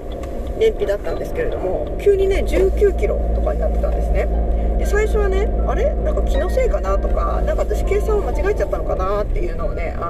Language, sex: Japanese, female